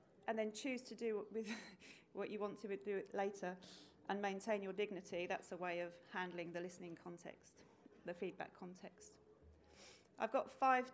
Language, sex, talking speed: English, female, 160 wpm